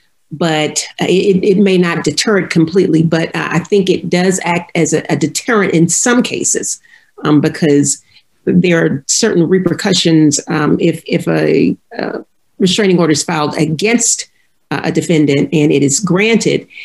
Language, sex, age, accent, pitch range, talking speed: English, female, 40-59, American, 160-200 Hz, 165 wpm